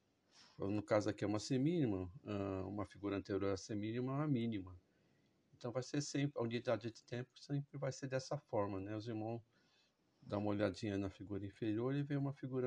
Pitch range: 100-130 Hz